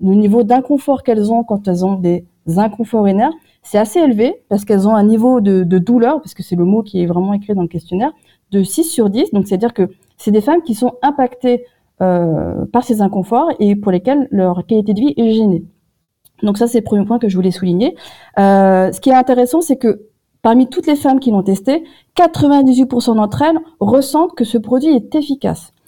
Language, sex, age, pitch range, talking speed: French, female, 30-49, 200-270 Hz, 215 wpm